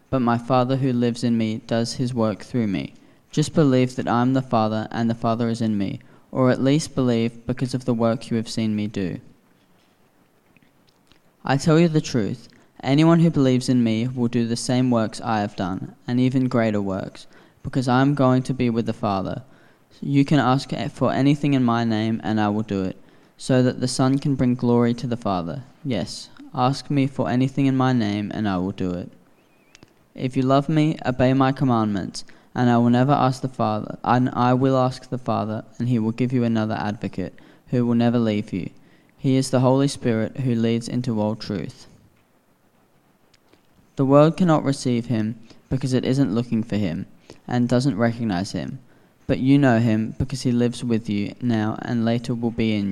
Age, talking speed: 10-29, 200 wpm